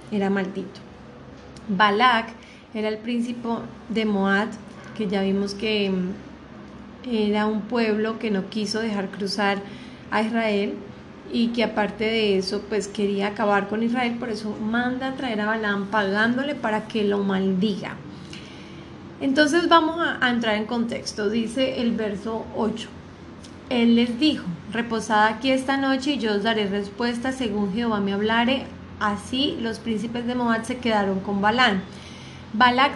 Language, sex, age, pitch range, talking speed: Spanish, female, 30-49, 210-250 Hz, 145 wpm